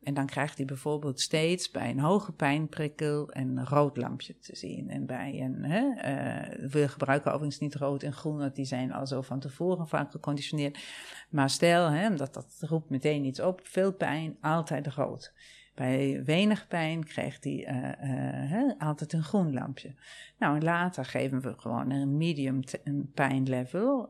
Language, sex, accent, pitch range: Dutch, female, Dutch, 135-170 Hz